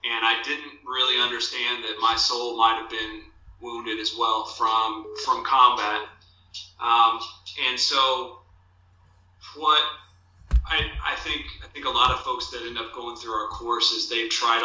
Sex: male